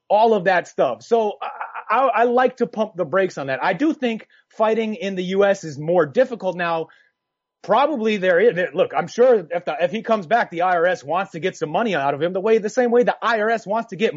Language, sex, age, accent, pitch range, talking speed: English, male, 30-49, American, 175-225 Hz, 235 wpm